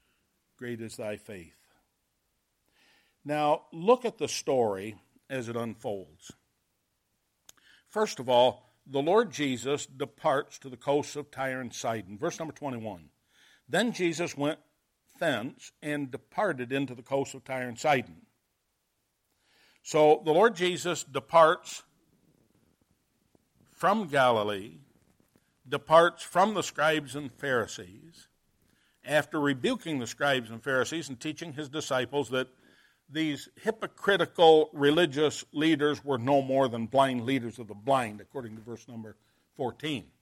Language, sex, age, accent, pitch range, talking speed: English, male, 60-79, American, 130-160 Hz, 125 wpm